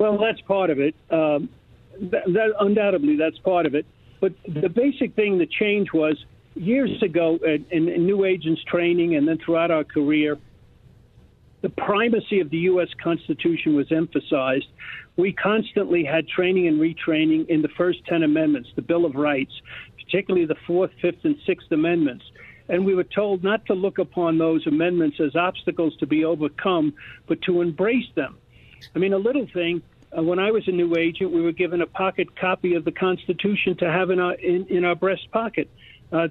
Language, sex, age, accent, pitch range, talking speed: English, male, 50-69, American, 160-195 Hz, 180 wpm